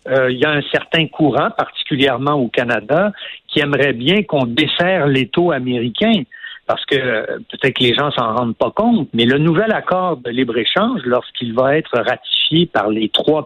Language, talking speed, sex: French, 185 wpm, male